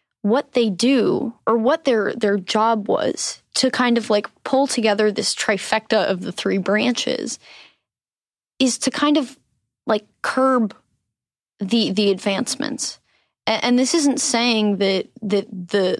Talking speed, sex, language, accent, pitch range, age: 145 wpm, female, English, American, 200-245 Hz, 20-39